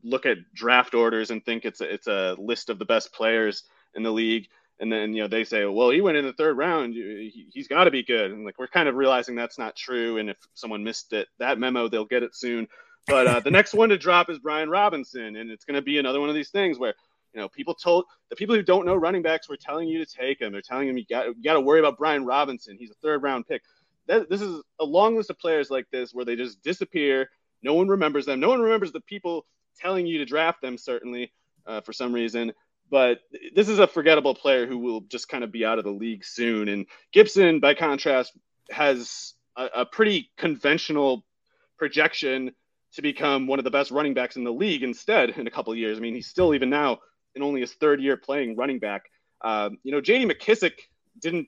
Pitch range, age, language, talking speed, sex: 120-165 Hz, 30-49, English, 240 wpm, male